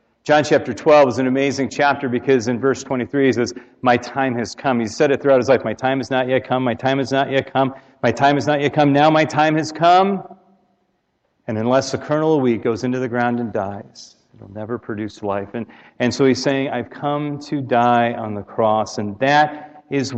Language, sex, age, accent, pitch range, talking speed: English, male, 40-59, American, 120-140 Hz, 230 wpm